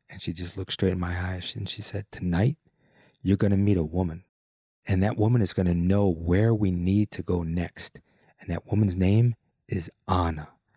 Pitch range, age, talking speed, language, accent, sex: 95-115 Hz, 30-49, 205 wpm, English, American, male